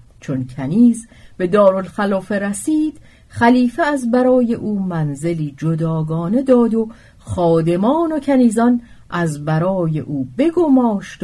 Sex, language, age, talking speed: female, Persian, 40-59, 105 wpm